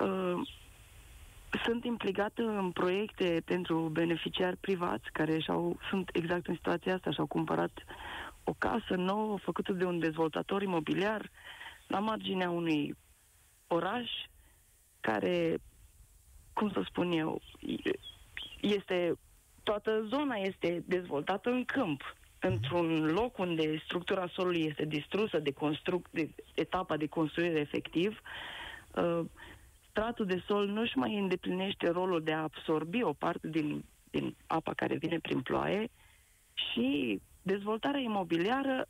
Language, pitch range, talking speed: Romanian, 160-215 Hz, 115 wpm